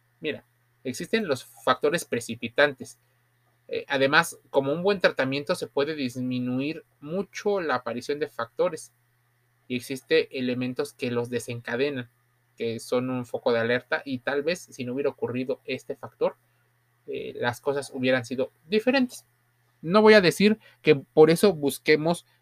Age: 30-49